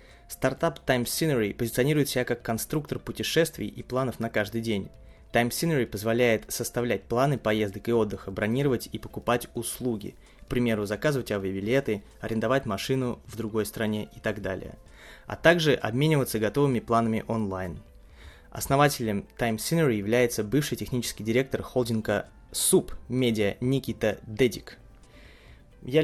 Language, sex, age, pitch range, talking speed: Russian, male, 20-39, 105-125 Hz, 130 wpm